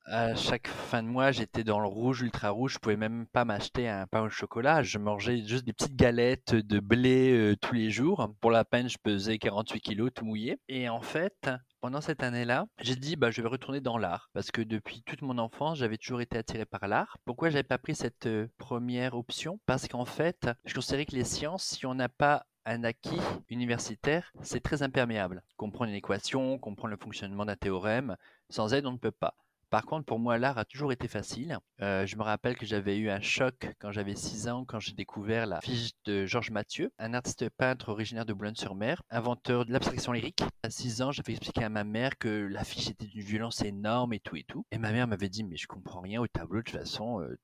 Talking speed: 230 wpm